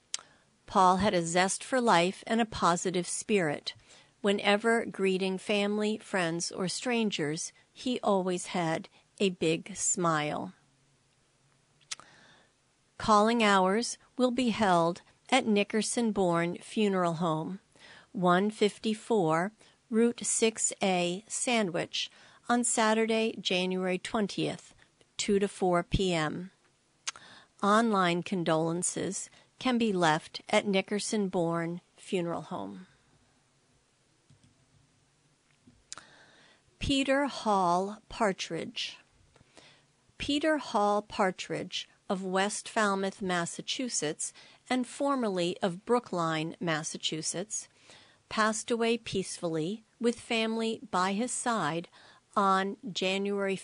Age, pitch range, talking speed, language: 50-69, 170-220 Hz, 85 wpm, English